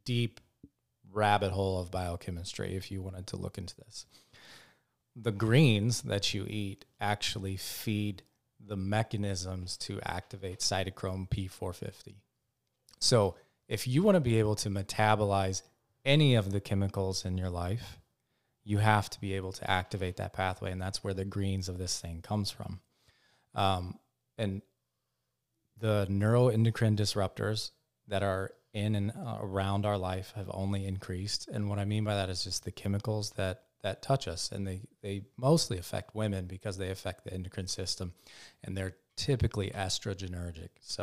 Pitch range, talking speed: 95-110 Hz, 155 wpm